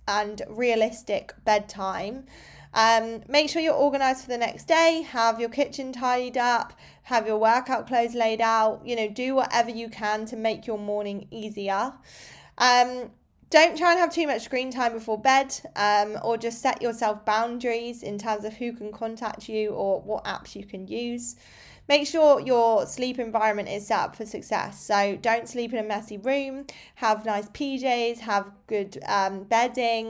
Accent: British